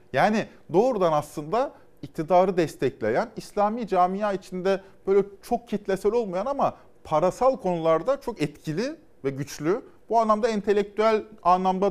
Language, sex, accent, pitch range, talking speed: Turkish, male, native, 120-200 Hz, 115 wpm